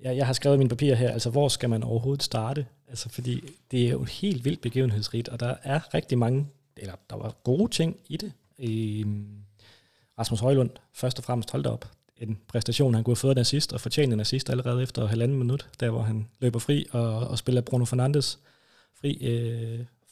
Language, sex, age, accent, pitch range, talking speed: Danish, male, 30-49, native, 115-140 Hz, 205 wpm